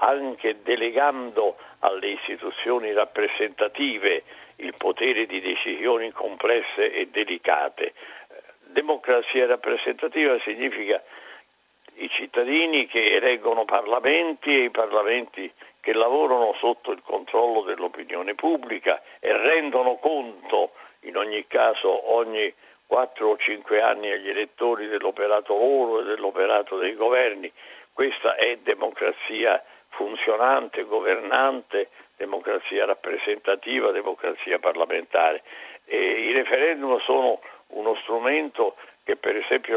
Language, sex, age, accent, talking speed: Italian, male, 60-79, native, 100 wpm